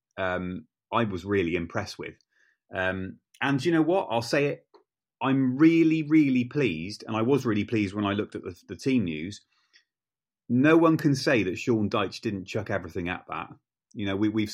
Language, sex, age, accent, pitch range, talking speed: English, male, 30-49, British, 95-115 Hz, 190 wpm